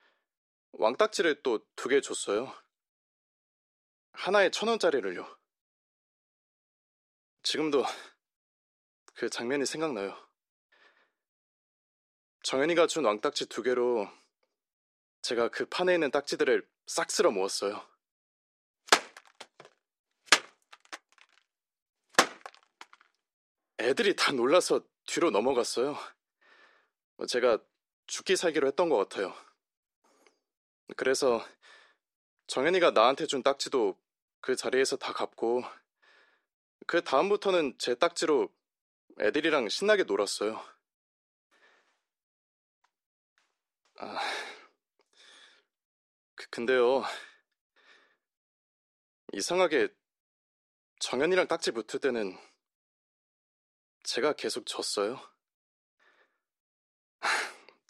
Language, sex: Korean, male